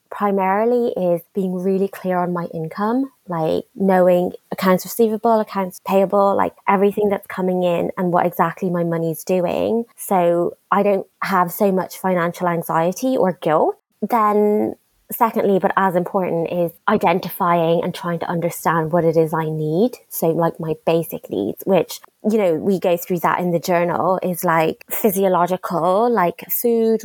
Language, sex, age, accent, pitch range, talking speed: English, female, 20-39, British, 175-205 Hz, 160 wpm